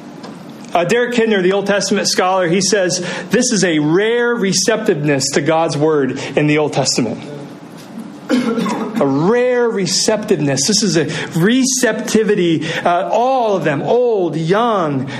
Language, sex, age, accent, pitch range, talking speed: English, male, 40-59, American, 145-205 Hz, 135 wpm